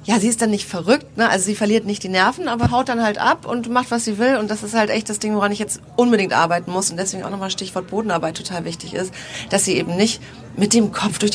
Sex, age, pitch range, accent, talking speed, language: female, 30-49, 185-230 Hz, German, 280 wpm, German